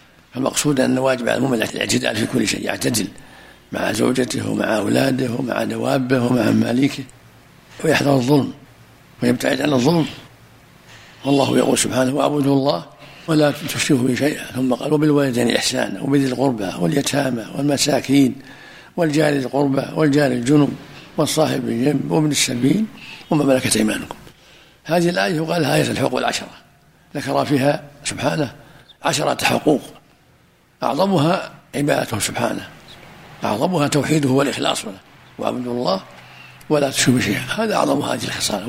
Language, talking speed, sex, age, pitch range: Arabic, 120 wpm, male, 60-79, 130-150 Hz